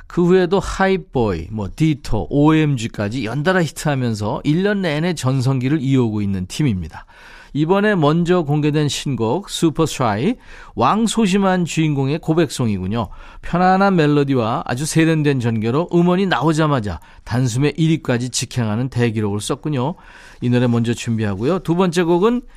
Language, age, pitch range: Korean, 40-59, 120-170 Hz